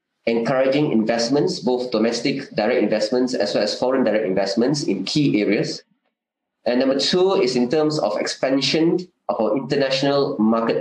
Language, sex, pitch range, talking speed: English, male, 125-165 Hz, 150 wpm